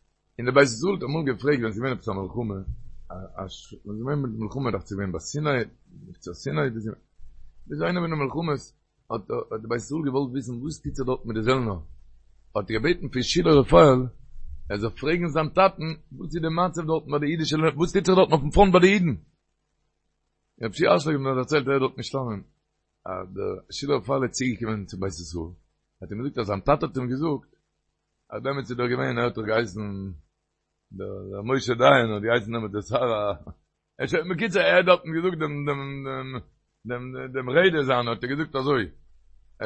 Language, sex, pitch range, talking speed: Hebrew, male, 110-160 Hz, 105 wpm